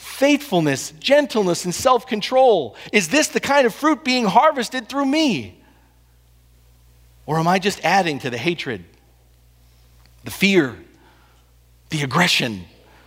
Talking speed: 120 wpm